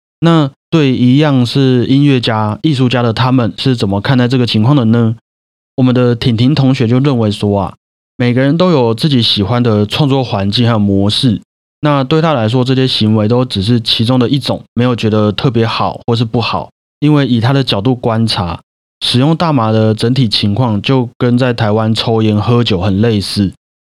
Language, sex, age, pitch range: Chinese, male, 30-49, 105-130 Hz